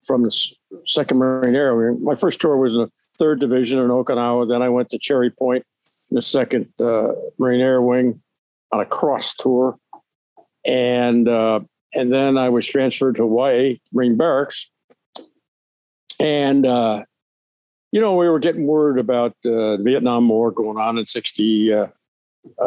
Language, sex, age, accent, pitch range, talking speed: English, male, 60-79, American, 115-150 Hz, 165 wpm